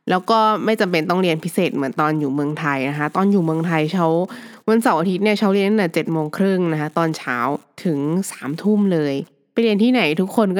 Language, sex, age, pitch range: Thai, female, 20-39, 165-230 Hz